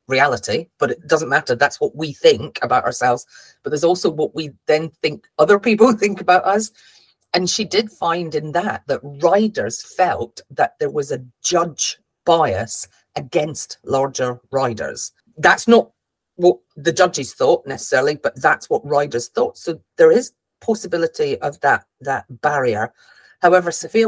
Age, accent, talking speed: 40-59, British, 155 wpm